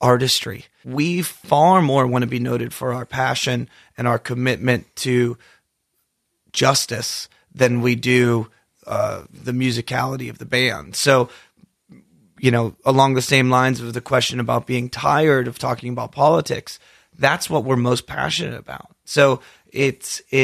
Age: 30-49